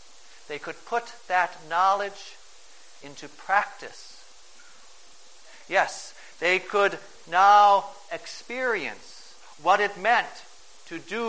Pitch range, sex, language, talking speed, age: 170-220 Hz, male, English, 90 wpm, 50-69